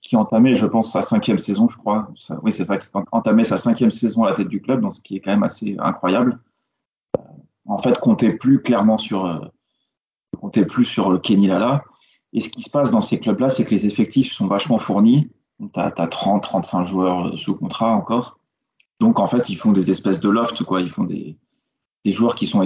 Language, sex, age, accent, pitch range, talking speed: French, male, 30-49, French, 95-120 Hz, 220 wpm